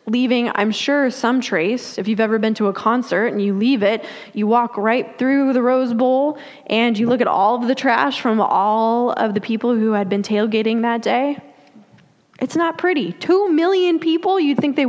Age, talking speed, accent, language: 20-39, 205 wpm, American, English